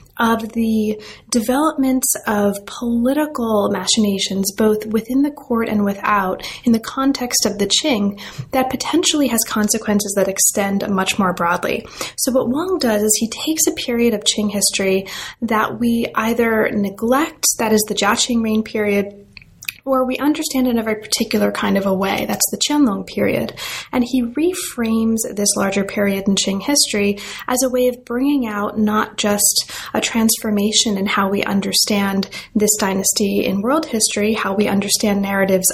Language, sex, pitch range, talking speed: English, female, 200-245 Hz, 160 wpm